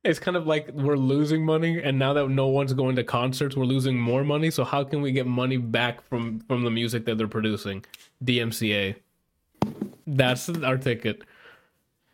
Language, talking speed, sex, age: English, 185 wpm, male, 20-39